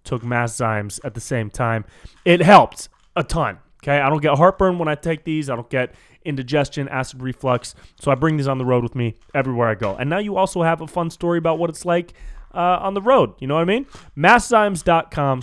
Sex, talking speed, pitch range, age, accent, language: male, 230 wpm, 115-145 Hz, 30-49, American, English